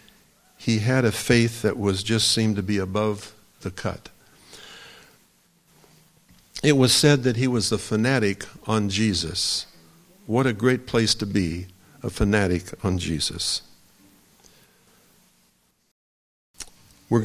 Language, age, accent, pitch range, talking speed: English, 50-69, American, 95-125 Hz, 120 wpm